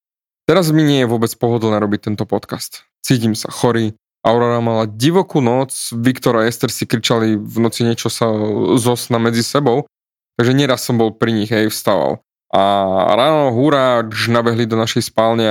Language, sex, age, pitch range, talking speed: Slovak, male, 20-39, 110-140 Hz, 165 wpm